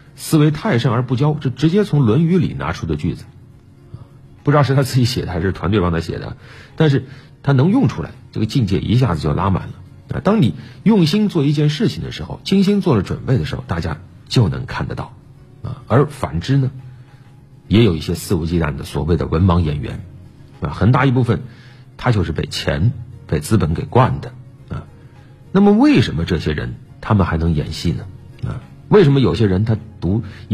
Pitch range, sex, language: 95-135 Hz, male, Chinese